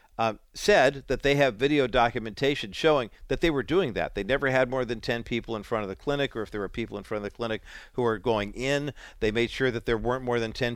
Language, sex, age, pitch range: English, male, 50-69, 105-140 Hz